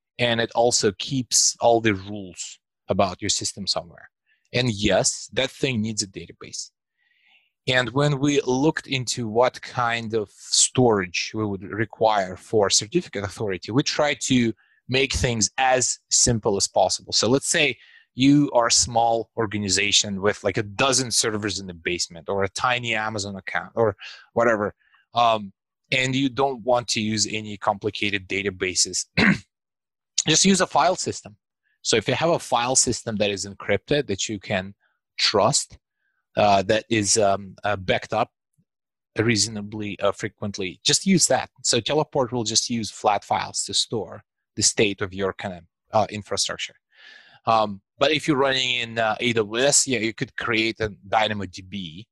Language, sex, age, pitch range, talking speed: English, male, 30-49, 105-130 Hz, 160 wpm